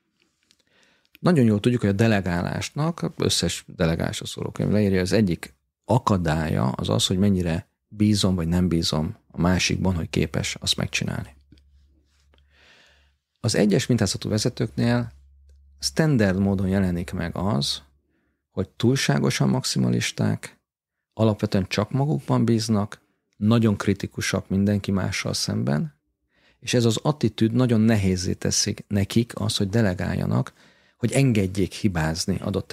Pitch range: 85-115 Hz